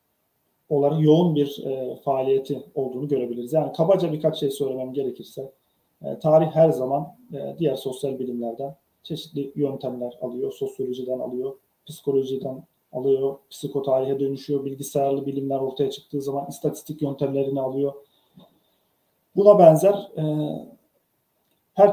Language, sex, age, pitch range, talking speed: Turkish, male, 40-59, 130-155 Hz, 115 wpm